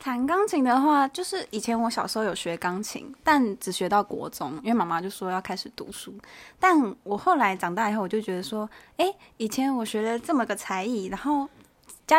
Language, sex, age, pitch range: Chinese, female, 10-29, 195-245 Hz